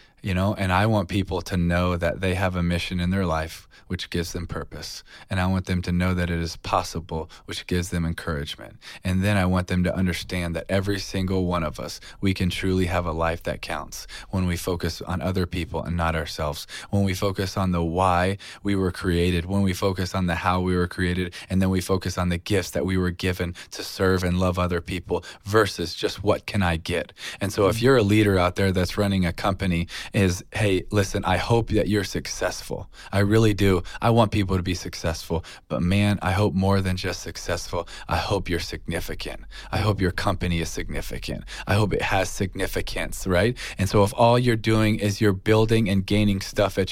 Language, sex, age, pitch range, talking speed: English, male, 20-39, 90-100 Hz, 220 wpm